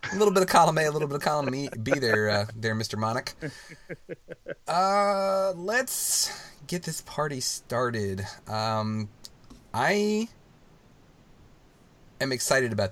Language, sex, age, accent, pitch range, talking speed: English, male, 30-49, American, 110-165 Hz, 130 wpm